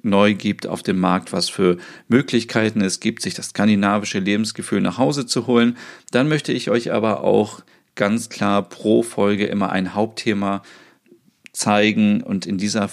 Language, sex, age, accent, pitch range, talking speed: German, male, 40-59, German, 100-120 Hz, 160 wpm